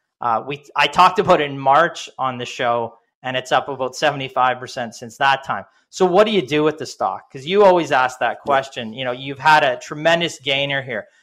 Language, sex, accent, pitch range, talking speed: English, male, American, 135-165 Hz, 205 wpm